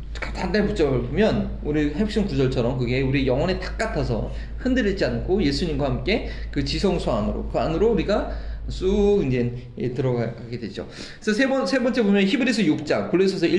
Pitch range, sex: 140-220 Hz, male